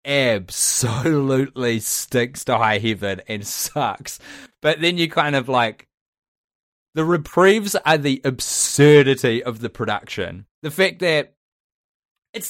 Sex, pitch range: male, 135-185 Hz